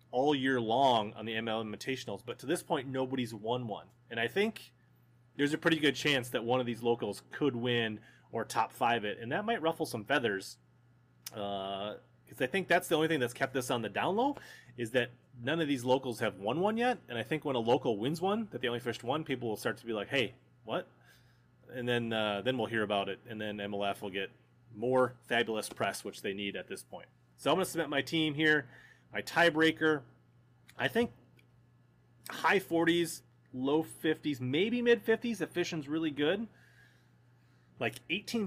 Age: 30-49